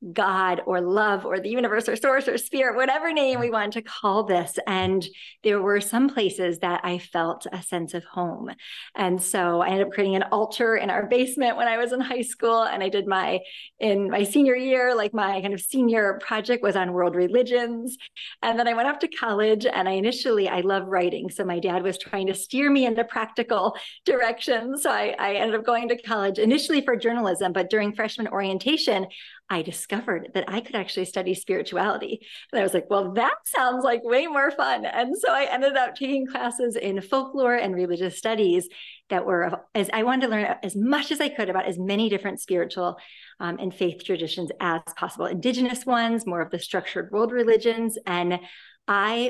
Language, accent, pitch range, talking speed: English, American, 185-240 Hz, 205 wpm